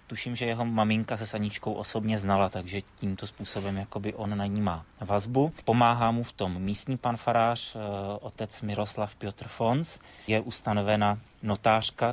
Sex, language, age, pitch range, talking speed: male, Slovak, 30-49, 100-120 Hz, 155 wpm